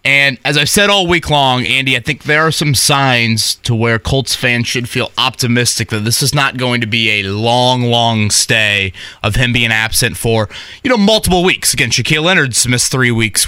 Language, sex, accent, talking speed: English, male, American, 210 wpm